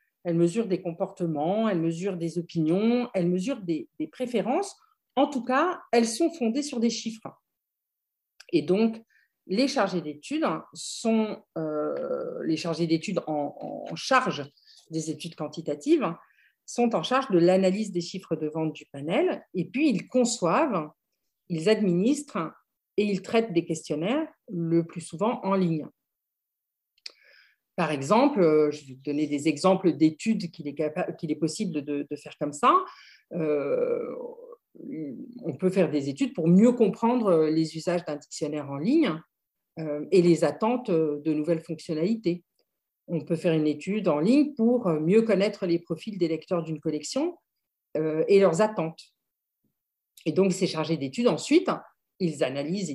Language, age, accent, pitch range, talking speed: French, 50-69, French, 160-230 Hz, 150 wpm